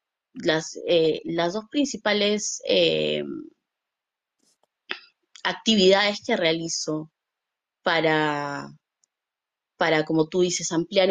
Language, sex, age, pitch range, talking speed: Spanish, female, 20-39, 185-245 Hz, 80 wpm